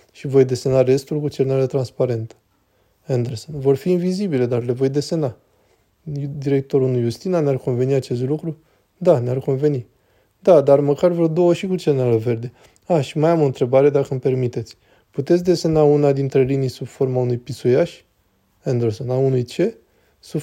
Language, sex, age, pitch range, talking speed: Romanian, male, 20-39, 125-170 Hz, 170 wpm